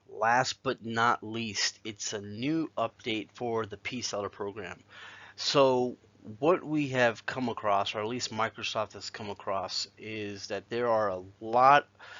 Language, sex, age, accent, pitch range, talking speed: English, male, 30-49, American, 100-120 Hz, 150 wpm